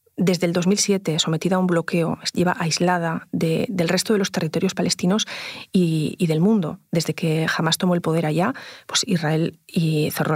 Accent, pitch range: Spanish, 170-200 Hz